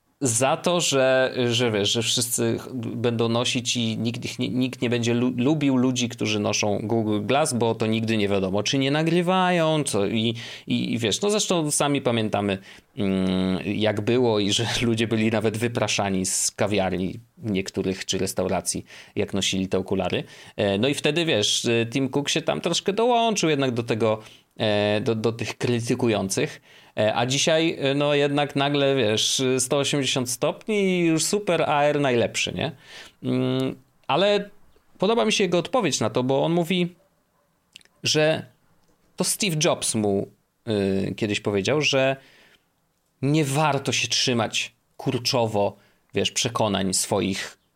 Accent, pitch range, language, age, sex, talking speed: native, 110-140 Hz, Polish, 30-49, male, 140 wpm